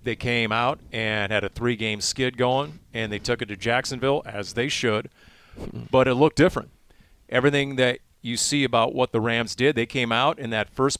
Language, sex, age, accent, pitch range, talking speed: English, male, 40-59, American, 115-140 Hz, 200 wpm